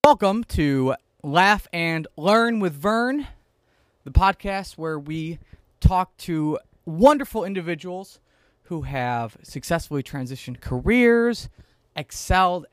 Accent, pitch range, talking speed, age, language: American, 135-185 Hz, 100 wpm, 20-39, English